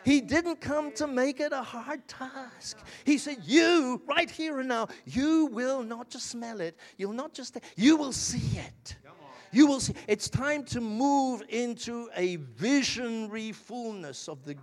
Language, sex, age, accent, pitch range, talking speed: English, male, 50-69, British, 170-265 Hz, 175 wpm